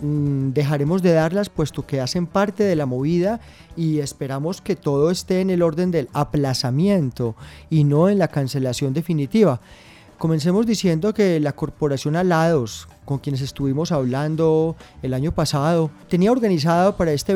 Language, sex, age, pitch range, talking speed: Spanish, male, 30-49, 135-175 Hz, 150 wpm